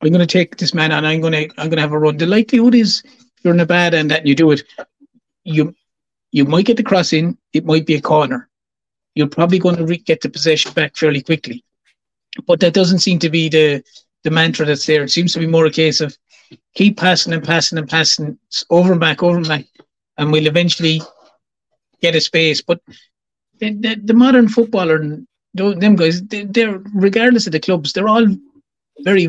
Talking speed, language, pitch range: 215 wpm, English, 155-190 Hz